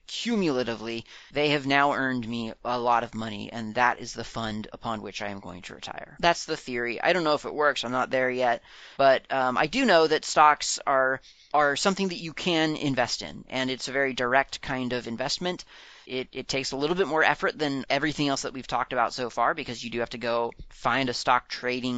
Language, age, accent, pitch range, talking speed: English, 30-49, American, 125-155 Hz, 245 wpm